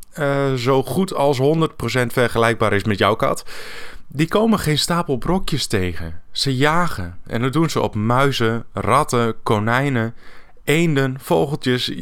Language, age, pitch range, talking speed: Dutch, 20-39, 110-140 Hz, 140 wpm